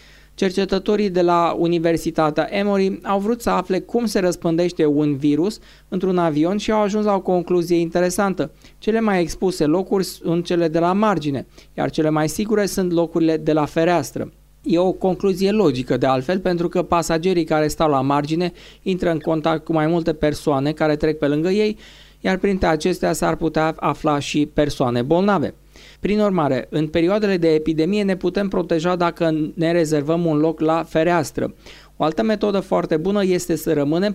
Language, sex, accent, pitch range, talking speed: Romanian, male, native, 155-185 Hz, 175 wpm